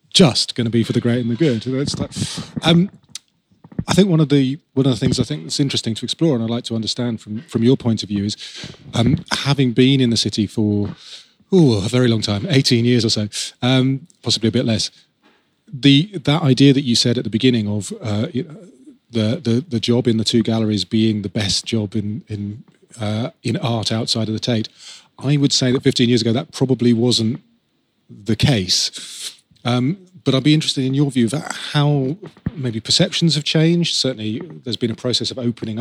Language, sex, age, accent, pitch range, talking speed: English, male, 30-49, British, 115-140 Hz, 210 wpm